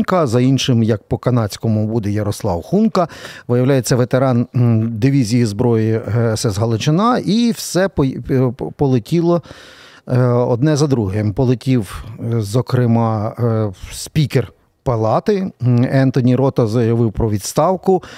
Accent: native